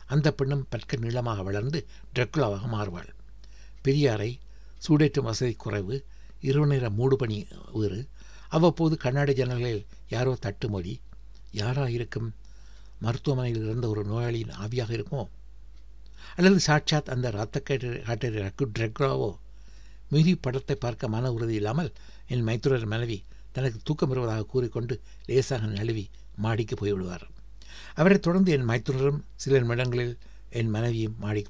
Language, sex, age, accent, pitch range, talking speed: Tamil, male, 60-79, native, 100-135 Hz, 110 wpm